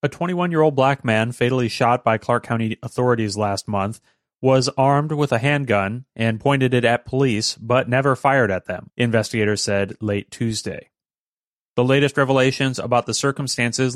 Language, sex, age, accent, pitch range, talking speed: English, male, 30-49, American, 110-130 Hz, 160 wpm